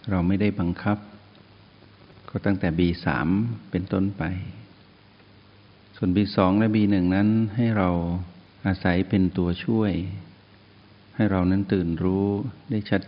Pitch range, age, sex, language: 90-105 Hz, 60-79, male, Thai